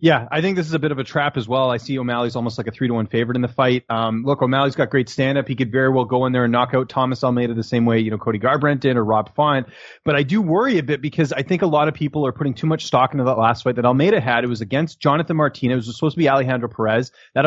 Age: 30-49